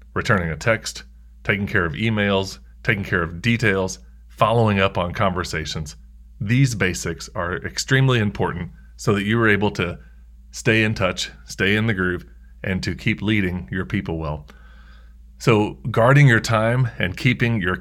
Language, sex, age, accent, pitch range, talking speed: English, male, 30-49, American, 75-110 Hz, 160 wpm